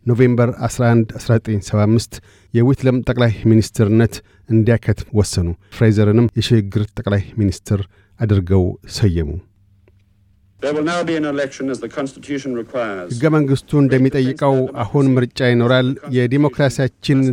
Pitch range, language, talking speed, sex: 105-125 Hz, Amharic, 95 wpm, male